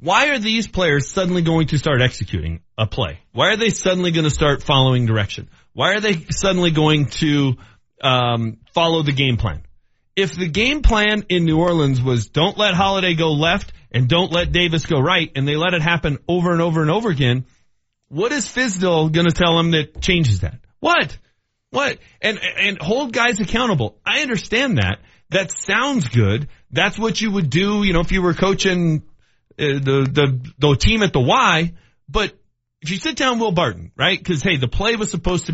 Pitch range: 125-185 Hz